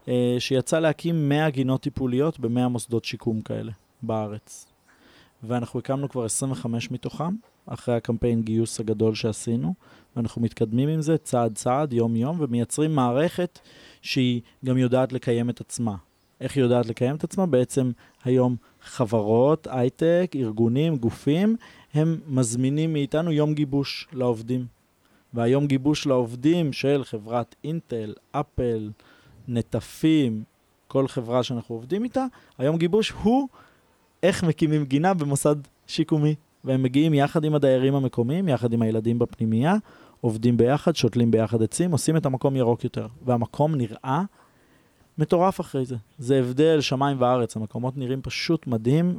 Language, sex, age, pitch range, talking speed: Hebrew, male, 20-39, 115-150 Hz, 130 wpm